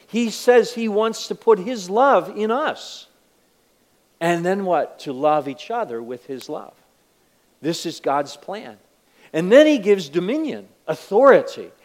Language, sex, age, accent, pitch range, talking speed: English, male, 50-69, American, 135-225 Hz, 150 wpm